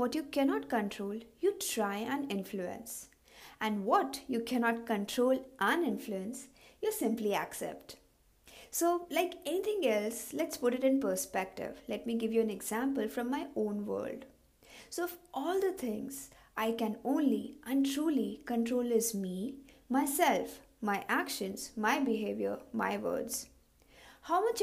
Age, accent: 60-79, Indian